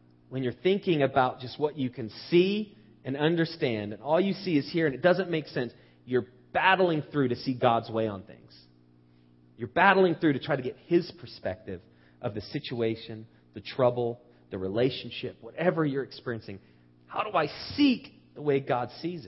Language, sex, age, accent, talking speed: English, male, 30-49, American, 180 wpm